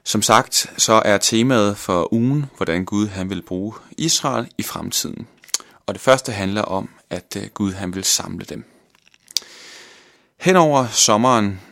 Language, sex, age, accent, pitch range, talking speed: Danish, male, 30-49, native, 95-120 Hz, 145 wpm